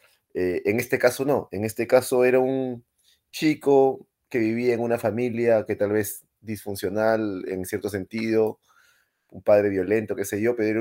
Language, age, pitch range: Spanish, 30-49, 95-115 Hz